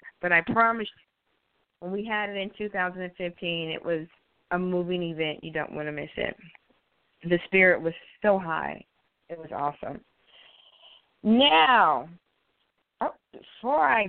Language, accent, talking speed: English, American, 140 wpm